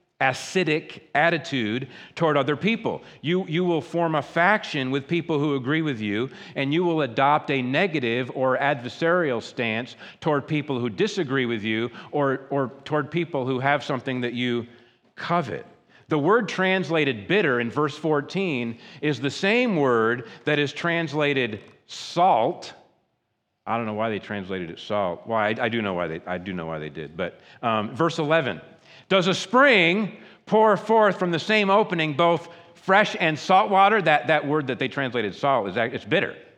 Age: 50-69